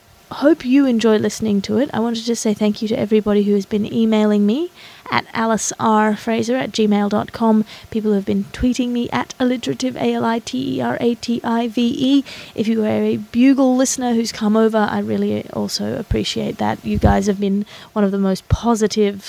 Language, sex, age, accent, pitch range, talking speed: English, female, 20-39, Australian, 200-230 Hz, 220 wpm